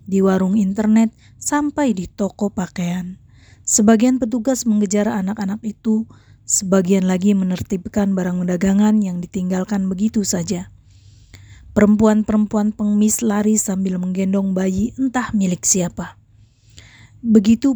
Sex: female